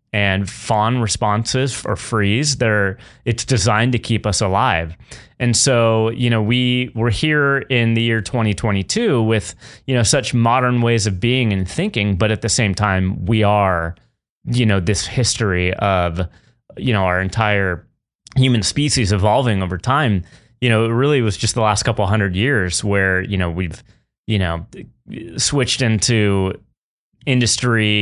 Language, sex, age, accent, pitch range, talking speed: English, male, 30-49, American, 100-120 Hz, 160 wpm